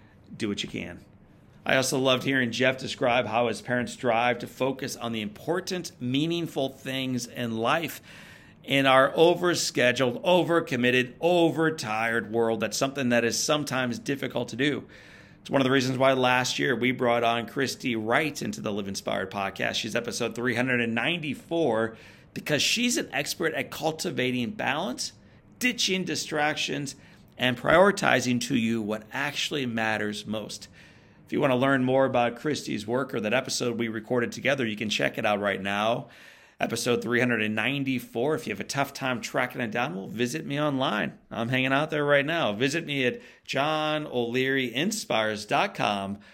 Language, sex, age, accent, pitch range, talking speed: English, male, 40-59, American, 115-140 Hz, 165 wpm